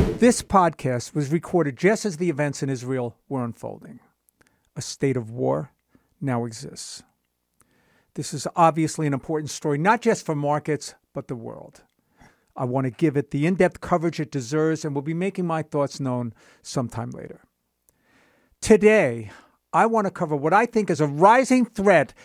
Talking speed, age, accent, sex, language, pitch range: 165 wpm, 50-69, American, male, English, 135-180 Hz